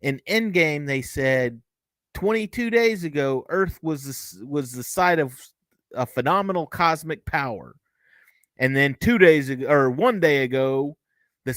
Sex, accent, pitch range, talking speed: male, American, 145-220 Hz, 145 wpm